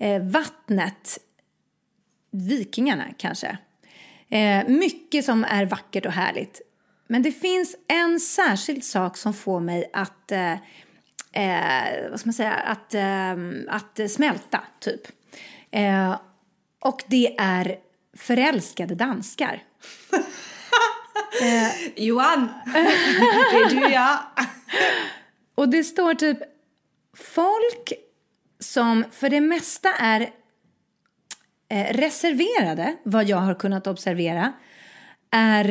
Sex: female